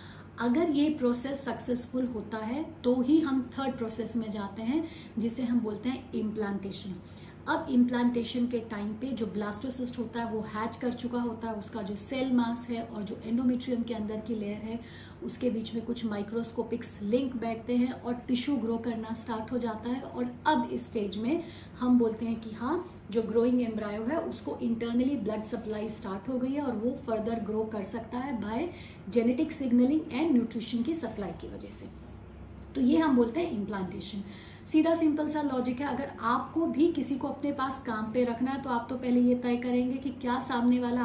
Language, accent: Hindi, native